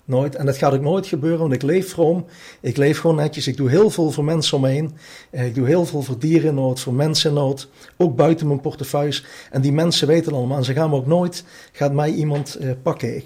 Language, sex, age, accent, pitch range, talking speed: Dutch, male, 40-59, Dutch, 130-165 Hz, 235 wpm